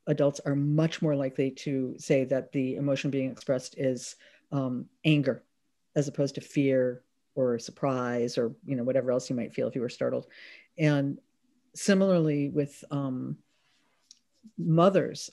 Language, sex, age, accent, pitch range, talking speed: English, female, 40-59, American, 140-170 Hz, 150 wpm